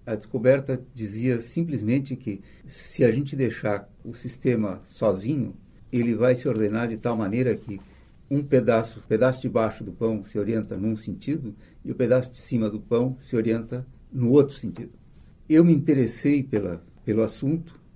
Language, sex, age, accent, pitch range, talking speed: Portuguese, male, 60-79, Brazilian, 105-125 Hz, 170 wpm